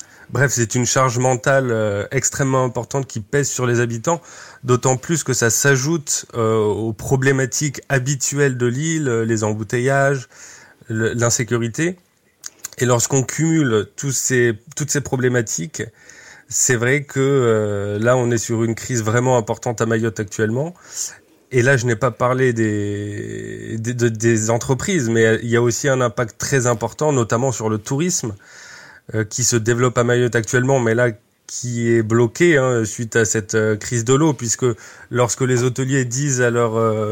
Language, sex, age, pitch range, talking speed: French, male, 30-49, 115-135 Hz, 155 wpm